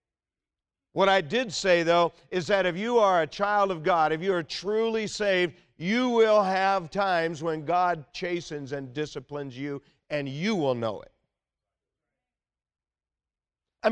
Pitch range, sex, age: 140-200 Hz, male, 50-69